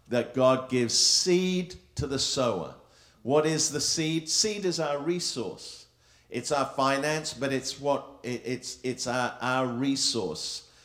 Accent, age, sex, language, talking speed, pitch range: British, 50-69, male, English, 150 wpm, 100-130 Hz